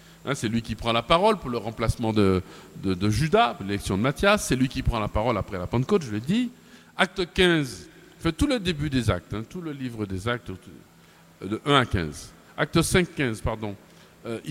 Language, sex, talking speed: French, male, 210 wpm